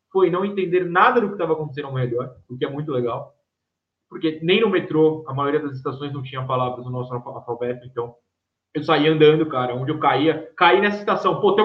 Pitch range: 140-190 Hz